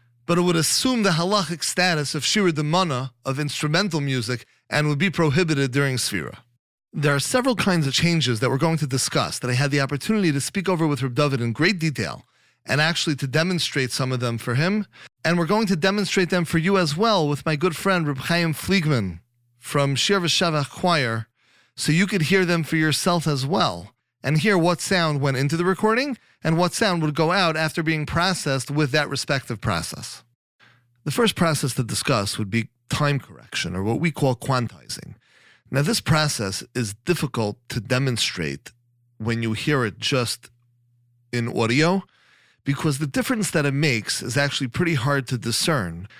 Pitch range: 120-170 Hz